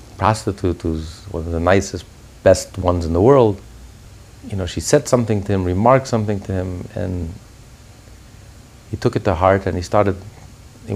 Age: 50-69